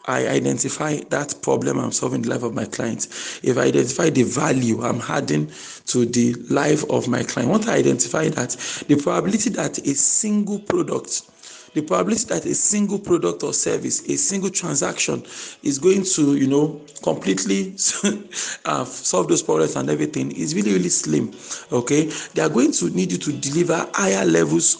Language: English